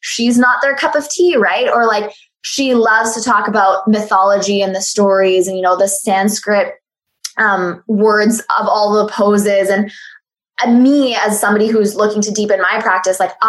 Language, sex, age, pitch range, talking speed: English, female, 10-29, 195-225 Hz, 180 wpm